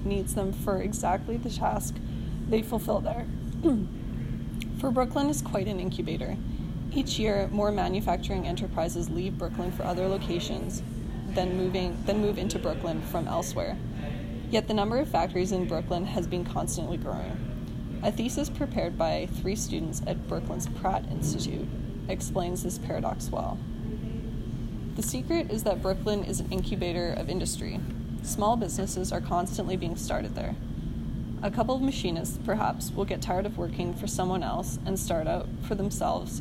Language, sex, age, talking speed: English, female, 20-39, 155 wpm